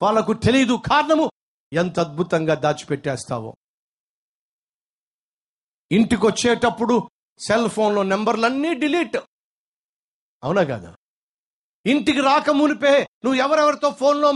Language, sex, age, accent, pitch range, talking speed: Telugu, male, 50-69, native, 170-280 Hz, 85 wpm